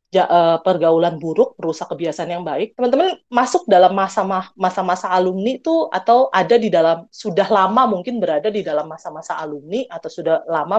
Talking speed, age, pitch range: 150 wpm, 30-49, 185-240 Hz